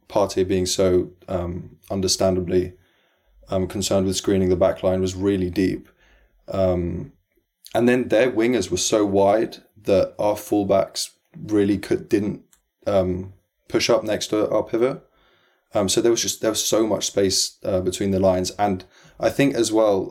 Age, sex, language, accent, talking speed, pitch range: 20-39, male, English, British, 165 wpm, 90-100 Hz